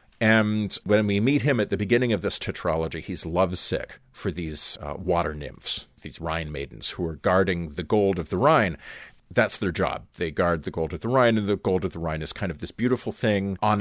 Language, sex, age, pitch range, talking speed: English, male, 40-59, 85-120 Hz, 225 wpm